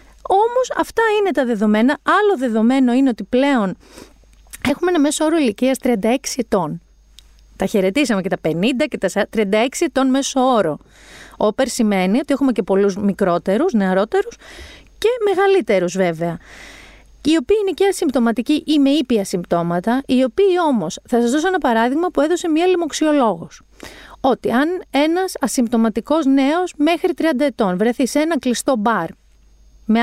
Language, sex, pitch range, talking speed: Greek, female, 195-285 Hz, 150 wpm